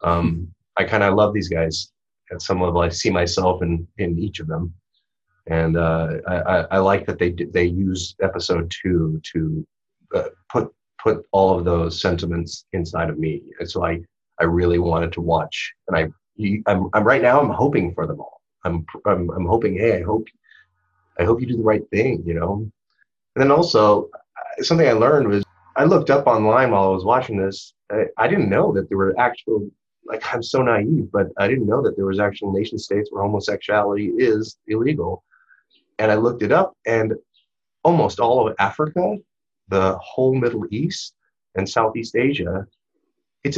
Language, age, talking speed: English, 30-49, 185 wpm